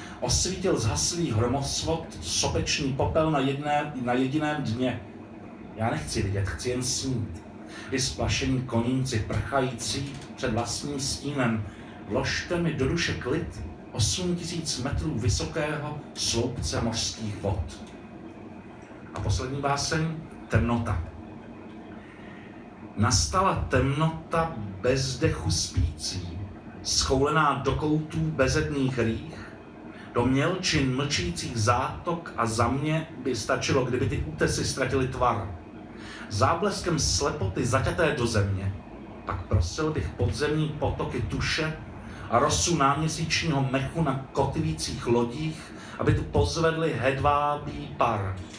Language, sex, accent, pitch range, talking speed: Czech, male, native, 105-140 Hz, 105 wpm